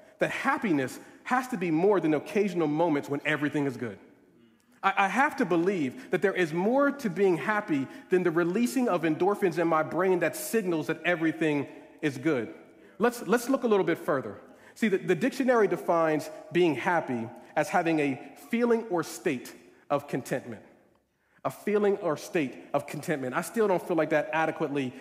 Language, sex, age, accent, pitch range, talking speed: English, male, 40-59, American, 150-200 Hz, 180 wpm